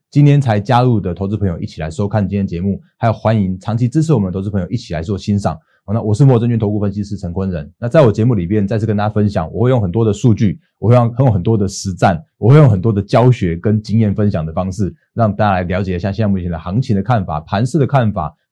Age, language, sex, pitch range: 20-39, Chinese, male, 95-120 Hz